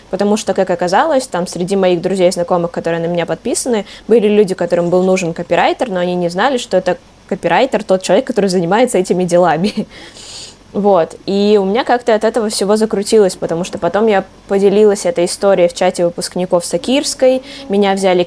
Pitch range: 180-210 Hz